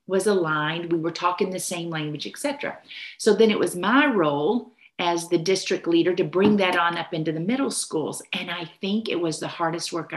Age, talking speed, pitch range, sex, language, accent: 50-69, 210 wpm, 165-200 Hz, female, English, American